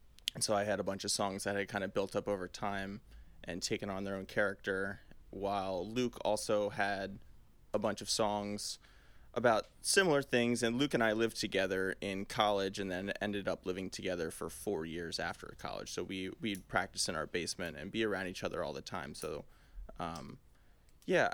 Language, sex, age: English, male, 20-39